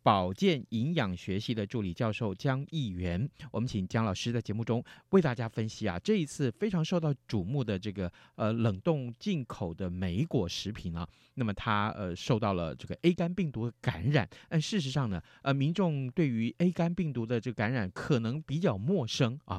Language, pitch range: Chinese, 105-160 Hz